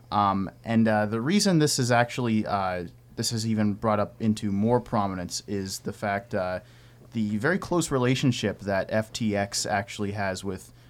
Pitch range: 100-115 Hz